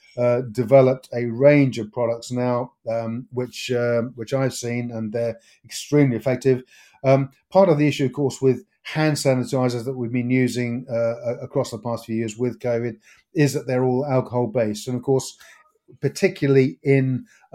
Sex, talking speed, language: male, 170 wpm, English